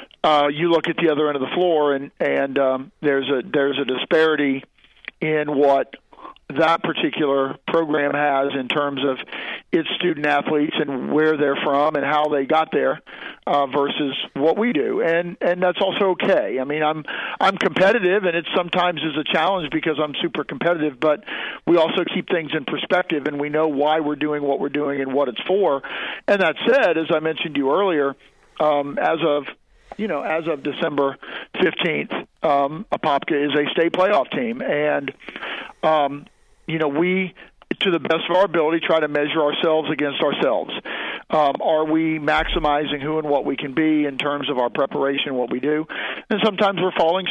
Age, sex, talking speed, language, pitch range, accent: 50-69, male, 190 wpm, English, 145-165 Hz, American